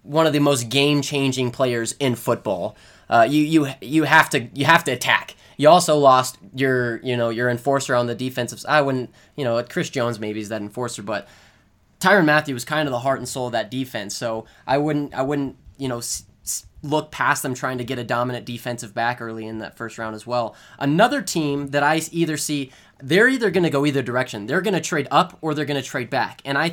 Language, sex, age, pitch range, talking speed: English, male, 20-39, 120-150 Hz, 230 wpm